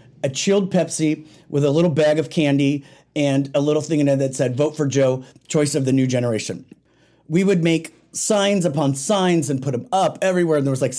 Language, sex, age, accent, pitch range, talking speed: English, male, 30-49, American, 135-175 Hz, 220 wpm